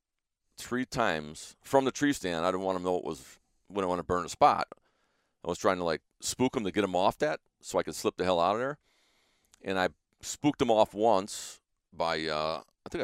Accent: American